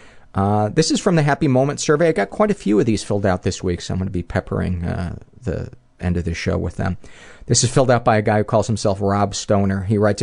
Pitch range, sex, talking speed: 95-115 Hz, male, 275 wpm